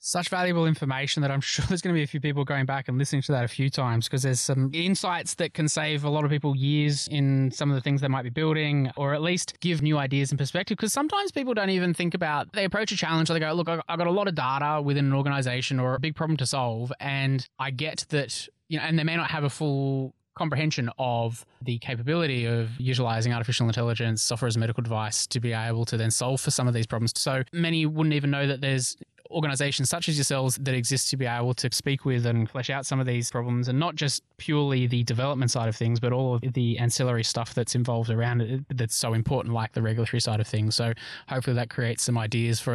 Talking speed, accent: 250 wpm, Australian